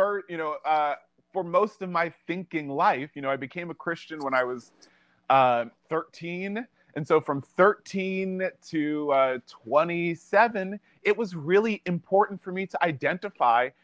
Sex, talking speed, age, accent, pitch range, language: male, 150 wpm, 30-49, American, 145-195 Hz, English